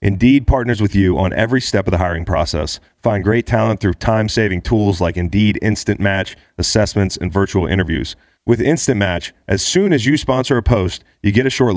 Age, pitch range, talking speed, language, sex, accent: 30-49, 90-115 Hz, 200 wpm, English, male, American